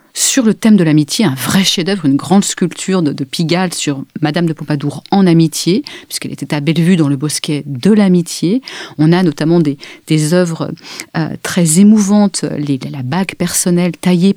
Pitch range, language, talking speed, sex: 165-220 Hz, French, 185 wpm, female